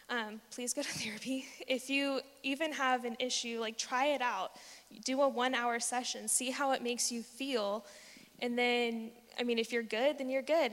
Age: 10-29